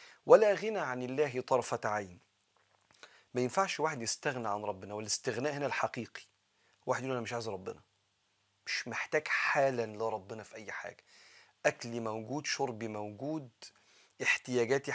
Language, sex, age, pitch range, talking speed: Arabic, male, 40-59, 115-145 Hz, 135 wpm